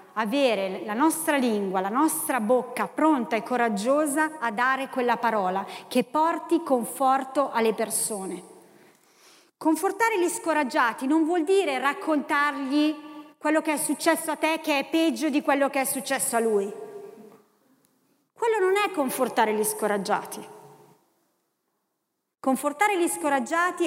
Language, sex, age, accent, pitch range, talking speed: Italian, female, 30-49, native, 240-320 Hz, 130 wpm